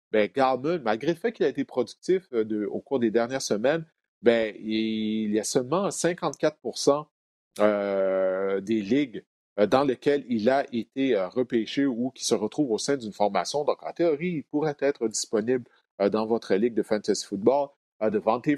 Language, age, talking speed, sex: French, 40-59, 180 wpm, male